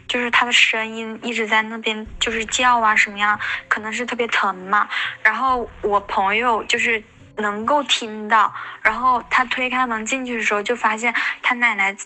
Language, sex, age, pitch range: Chinese, female, 10-29, 215-245 Hz